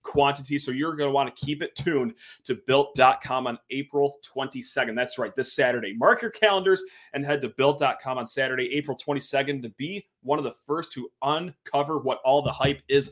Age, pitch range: 30-49, 130-160 Hz